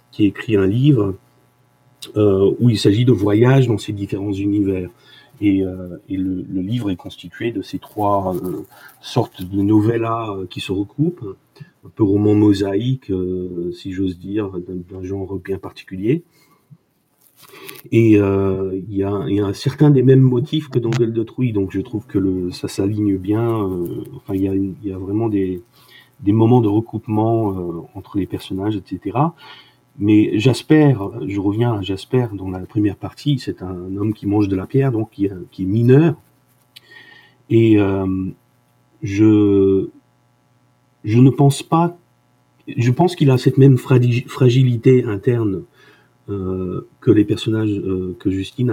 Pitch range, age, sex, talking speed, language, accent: 95-125 Hz, 40-59, male, 165 wpm, French, French